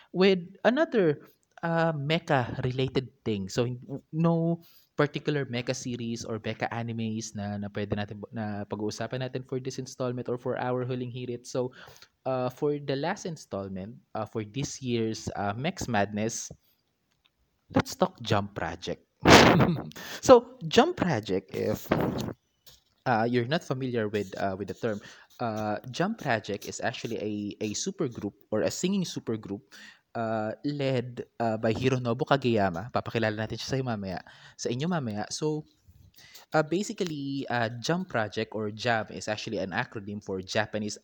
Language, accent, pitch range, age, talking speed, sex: Filipino, native, 110-135 Hz, 20-39, 145 wpm, male